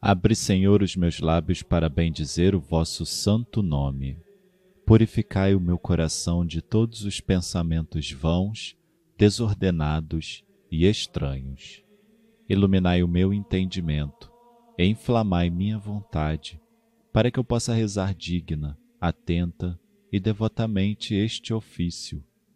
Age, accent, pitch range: 40-59, Brazilian, 85-130 Hz